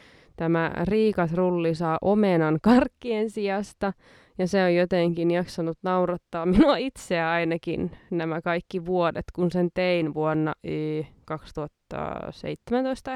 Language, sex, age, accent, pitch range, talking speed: Finnish, female, 20-39, native, 160-190 Hz, 105 wpm